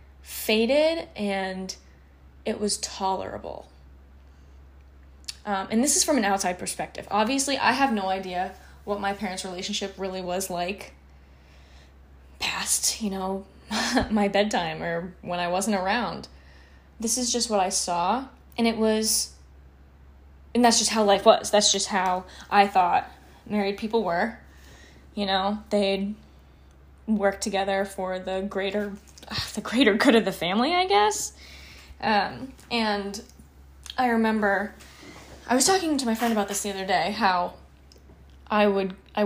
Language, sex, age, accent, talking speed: English, female, 10-29, American, 140 wpm